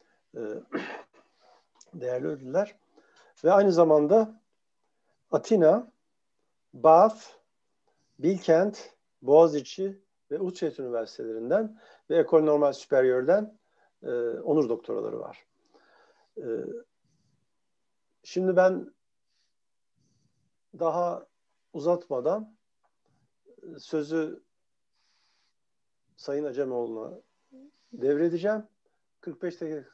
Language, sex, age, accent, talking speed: Turkish, male, 50-69, native, 60 wpm